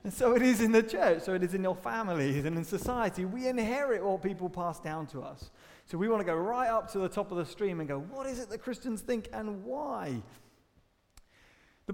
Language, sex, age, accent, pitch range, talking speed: English, male, 30-49, British, 140-195 Hz, 240 wpm